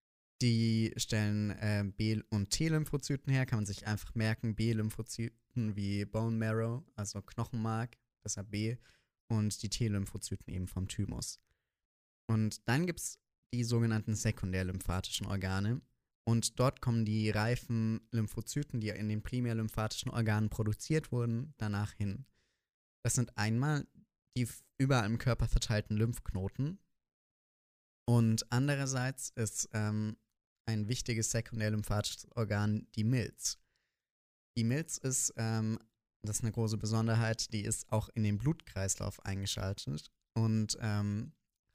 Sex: male